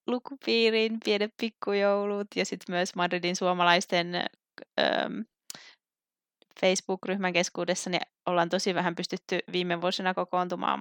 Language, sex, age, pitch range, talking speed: Finnish, female, 20-39, 180-210 Hz, 105 wpm